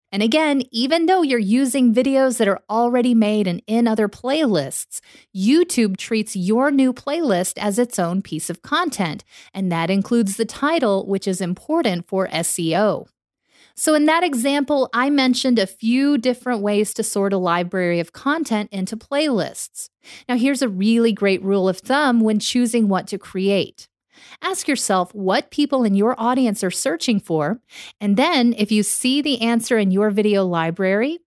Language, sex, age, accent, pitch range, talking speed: English, female, 30-49, American, 195-270 Hz, 170 wpm